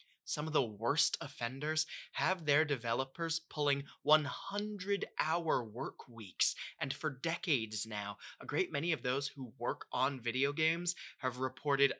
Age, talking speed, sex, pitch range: 20-39, 140 wpm, male, 130-175 Hz